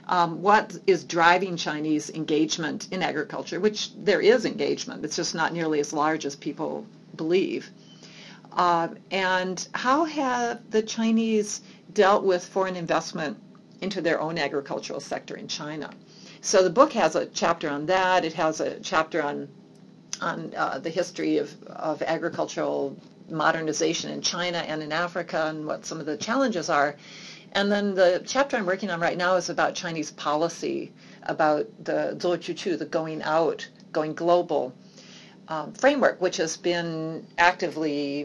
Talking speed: 155 wpm